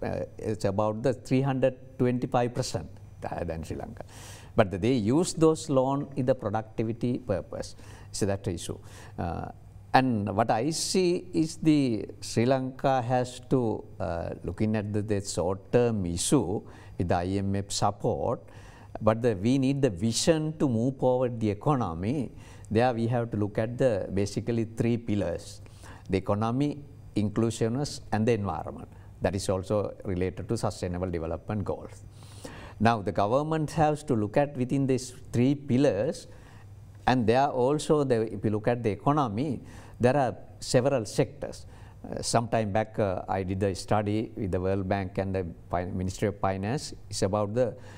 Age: 60-79